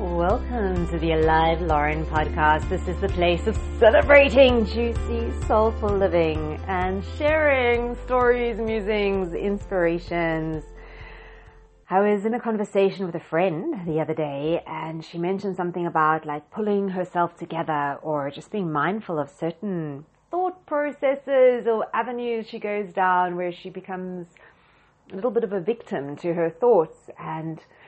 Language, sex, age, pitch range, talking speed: English, female, 30-49, 160-210 Hz, 140 wpm